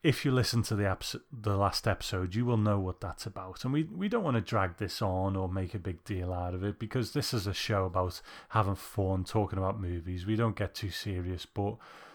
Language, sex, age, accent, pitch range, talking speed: English, male, 30-49, British, 95-115 Hz, 230 wpm